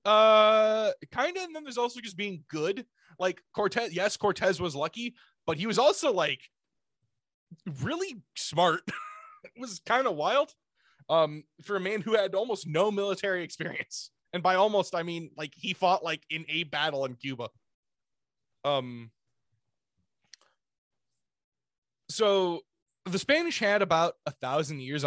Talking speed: 145 wpm